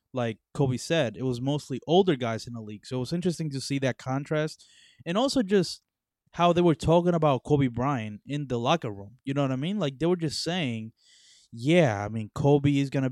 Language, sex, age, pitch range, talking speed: English, male, 20-39, 120-155 Hz, 230 wpm